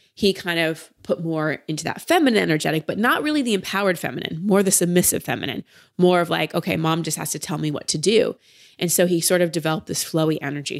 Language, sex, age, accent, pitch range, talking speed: English, female, 20-39, American, 165-200 Hz, 230 wpm